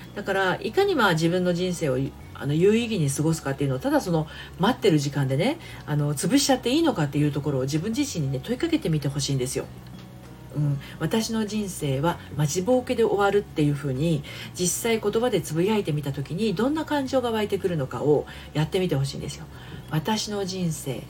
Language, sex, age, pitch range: Japanese, female, 40-59, 130-195 Hz